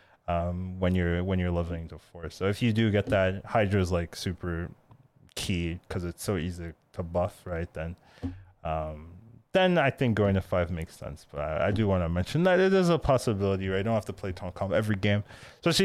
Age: 20-39